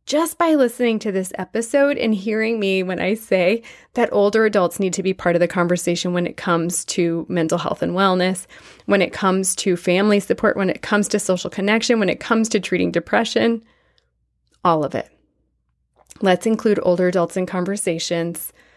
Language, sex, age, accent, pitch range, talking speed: English, female, 20-39, American, 180-255 Hz, 180 wpm